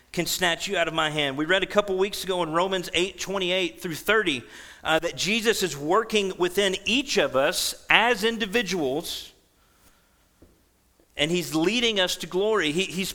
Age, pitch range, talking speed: 40-59, 165-205 Hz, 170 wpm